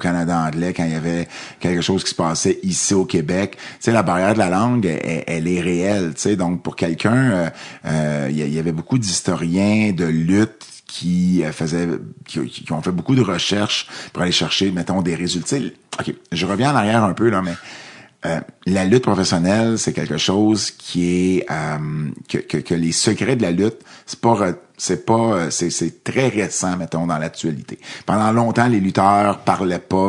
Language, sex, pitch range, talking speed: French, male, 85-100 Hz, 190 wpm